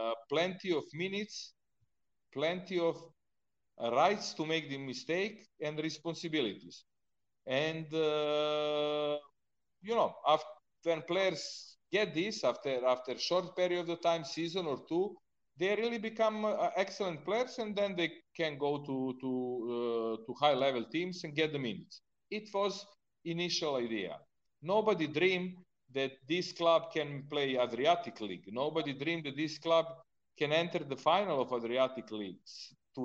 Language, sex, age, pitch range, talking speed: Romanian, male, 40-59, 135-180 Hz, 145 wpm